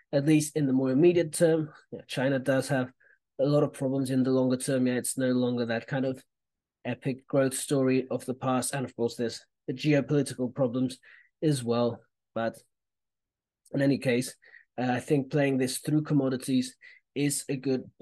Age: 30-49